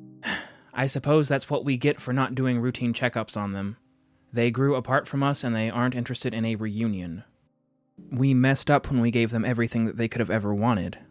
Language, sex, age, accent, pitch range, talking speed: English, male, 20-39, American, 105-130 Hz, 210 wpm